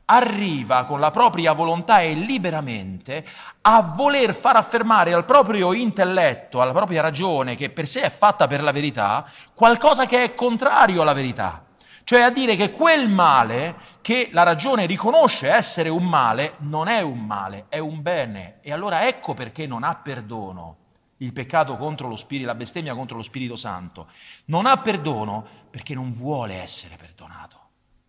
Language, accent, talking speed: Italian, native, 165 wpm